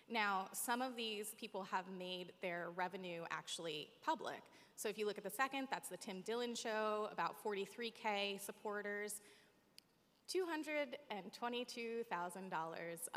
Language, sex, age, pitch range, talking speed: English, female, 20-39, 185-230 Hz, 125 wpm